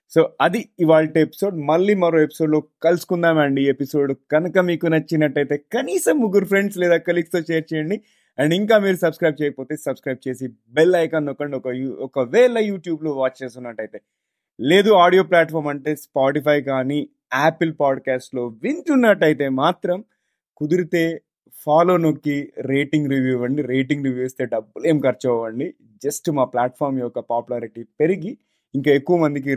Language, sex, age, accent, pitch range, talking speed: Telugu, male, 30-49, native, 135-175 Hz, 135 wpm